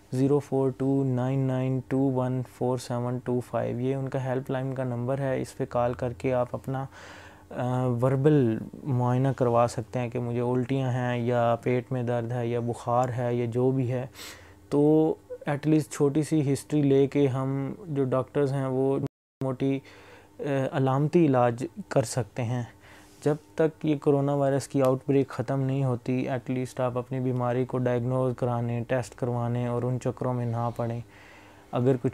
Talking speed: 155 wpm